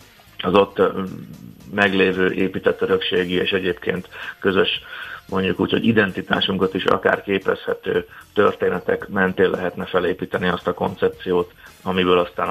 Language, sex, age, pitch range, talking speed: Hungarian, male, 30-49, 95-110 Hz, 115 wpm